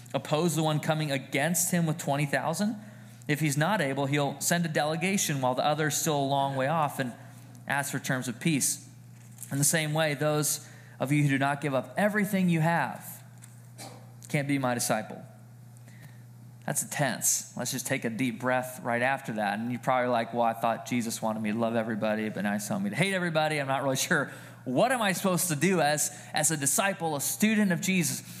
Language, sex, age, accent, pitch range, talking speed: English, male, 20-39, American, 130-175 Hz, 210 wpm